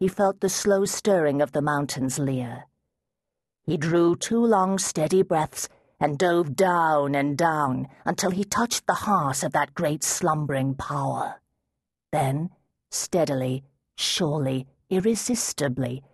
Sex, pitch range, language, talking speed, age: female, 150-210 Hz, English, 125 wpm, 40-59